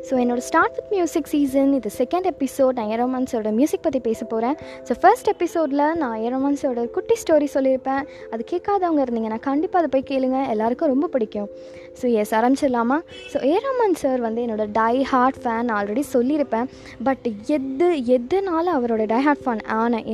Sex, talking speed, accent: female, 175 wpm, native